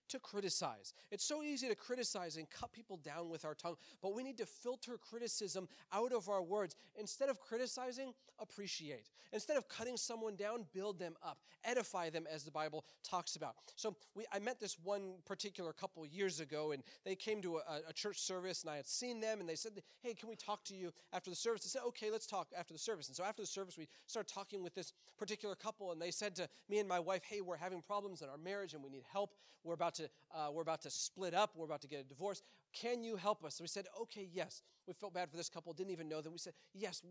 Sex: male